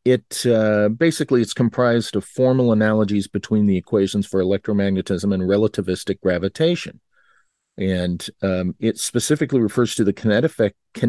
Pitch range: 100-125 Hz